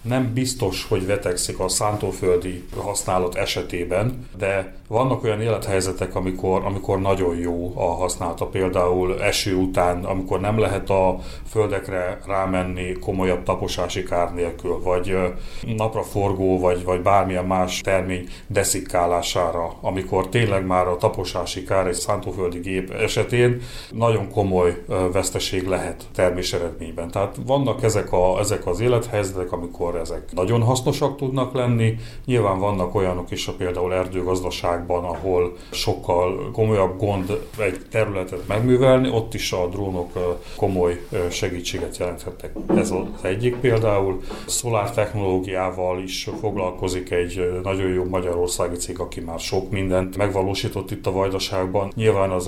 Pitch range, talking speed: 90-105 Hz, 130 wpm